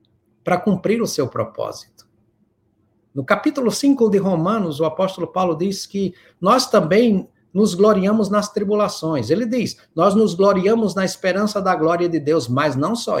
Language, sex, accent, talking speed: Portuguese, male, Brazilian, 160 wpm